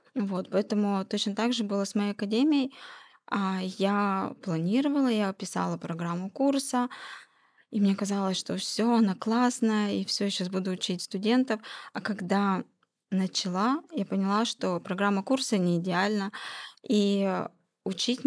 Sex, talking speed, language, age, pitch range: female, 130 wpm, Russian, 20-39, 190-220 Hz